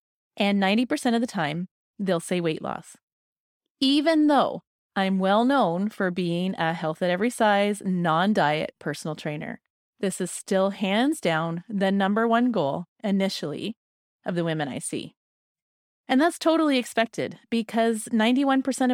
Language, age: English, 30-49